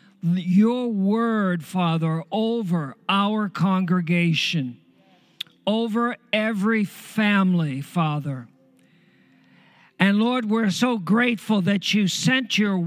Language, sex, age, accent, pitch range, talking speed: English, male, 50-69, American, 170-225 Hz, 90 wpm